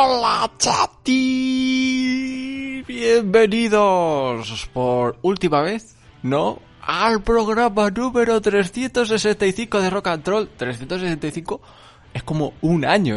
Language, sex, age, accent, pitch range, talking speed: Spanish, male, 20-39, Spanish, 110-160 Hz, 90 wpm